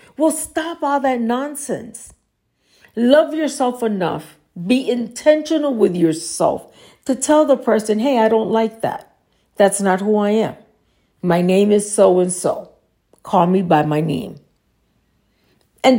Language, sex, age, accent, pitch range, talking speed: English, female, 50-69, American, 180-255 Hz, 135 wpm